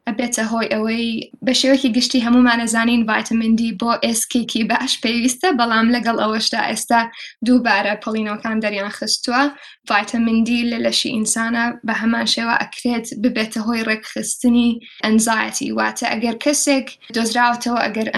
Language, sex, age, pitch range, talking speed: English, female, 10-29, 225-245 Hz, 135 wpm